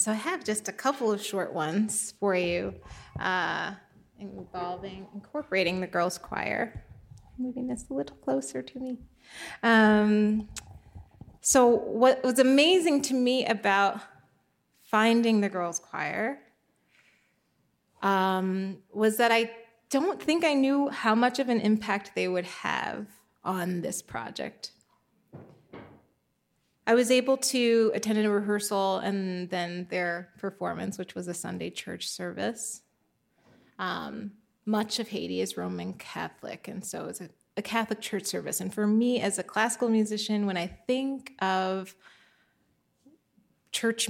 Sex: female